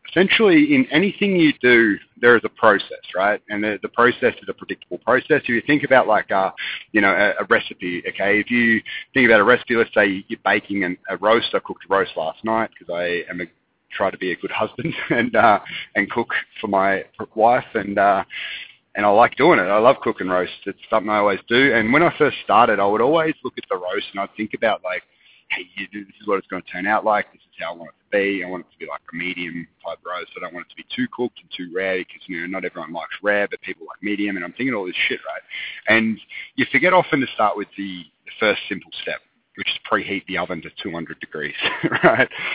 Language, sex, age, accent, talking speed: English, male, 30-49, Australian, 250 wpm